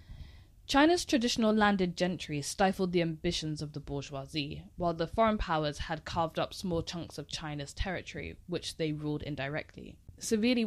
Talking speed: 150 wpm